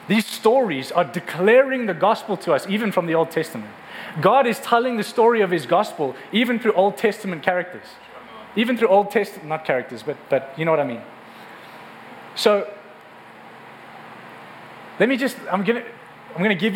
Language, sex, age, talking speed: English, male, 20-39, 170 wpm